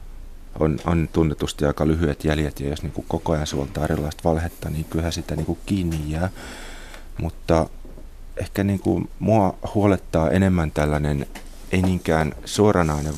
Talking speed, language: 150 wpm, Finnish